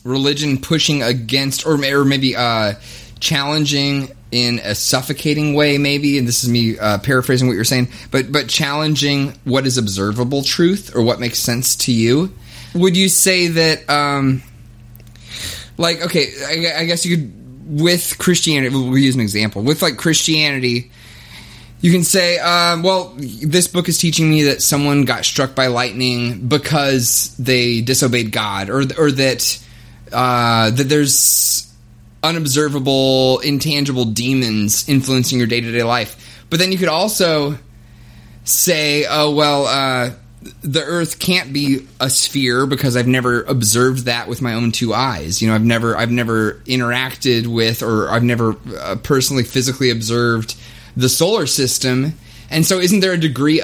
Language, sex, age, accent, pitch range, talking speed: English, male, 20-39, American, 120-150 Hz, 155 wpm